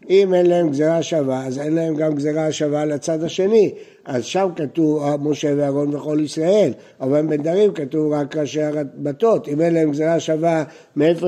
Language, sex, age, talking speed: Hebrew, male, 60-79, 170 wpm